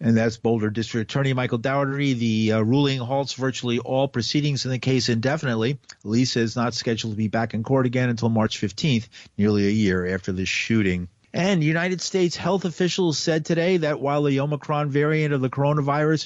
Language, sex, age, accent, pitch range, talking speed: English, male, 40-59, American, 110-140 Hz, 190 wpm